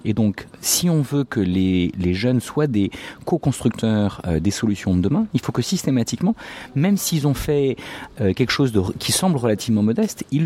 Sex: male